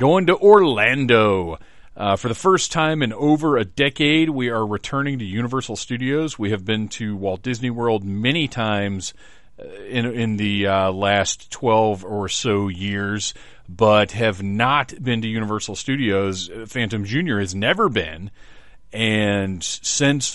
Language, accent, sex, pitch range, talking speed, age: English, American, male, 100-125 Hz, 145 wpm, 40-59